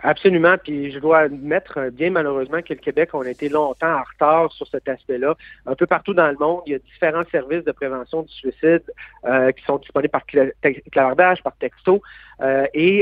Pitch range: 130-165 Hz